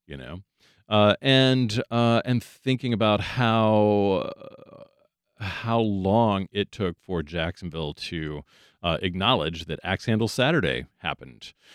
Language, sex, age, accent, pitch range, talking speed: English, male, 40-59, American, 80-110 Hz, 125 wpm